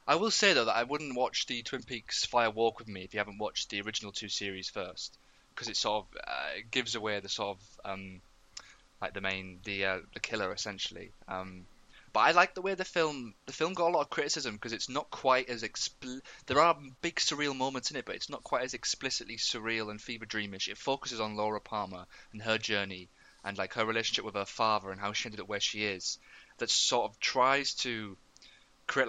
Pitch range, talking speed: 100-125 Hz, 225 wpm